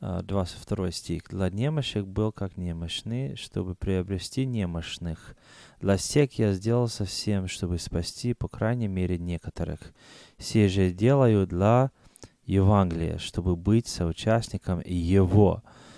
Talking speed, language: 115 wpm, Ukrainian